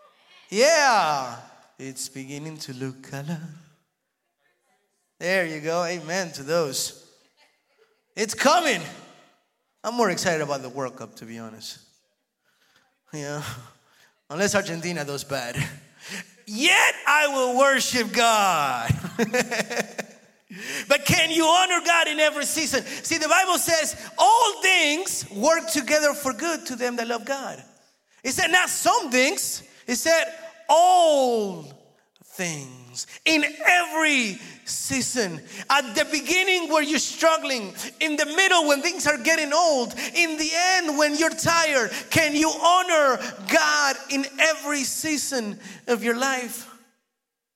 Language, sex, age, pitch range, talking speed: Spanish, male, 30-49, 220-315 Hz, 125 wpm